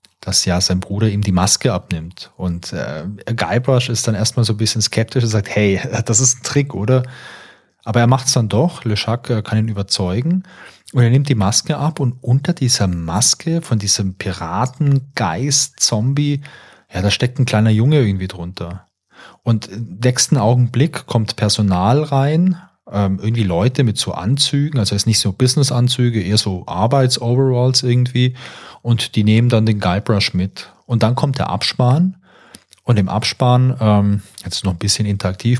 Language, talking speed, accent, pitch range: German, 175 wpm, German, 100-125 Hz